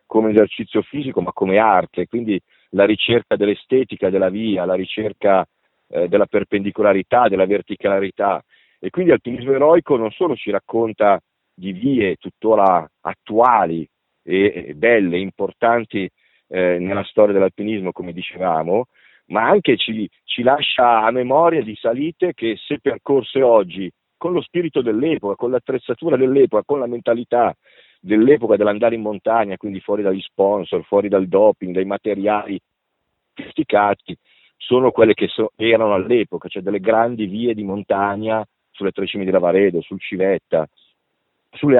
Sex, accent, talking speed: male, native, 140 wpm